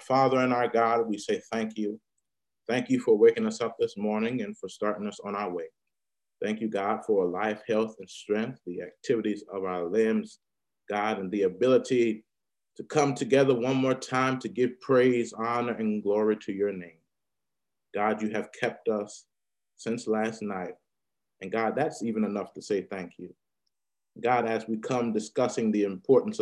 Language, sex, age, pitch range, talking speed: English, male, 30-49, 105-125 Hz, 180 wpm